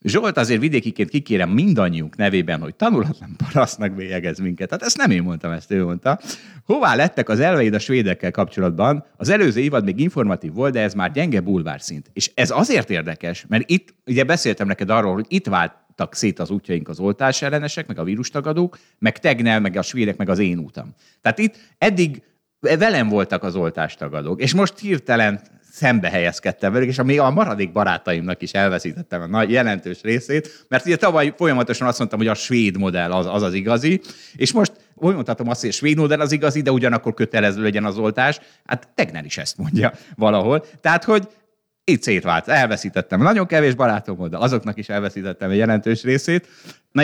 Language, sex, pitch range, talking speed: Hungarian, male, 100-150 Hz, 185 wpm